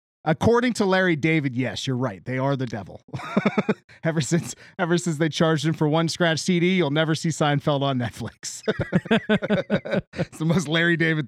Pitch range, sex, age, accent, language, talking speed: 140-180 Hz, male, 30-49, American, English, 175 wpm